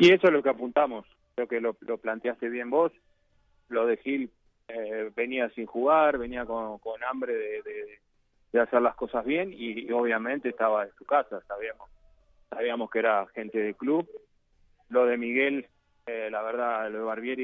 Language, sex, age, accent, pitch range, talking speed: Spanish, male, 30-49, Argentinian, 110-125 Hz, 185 wpm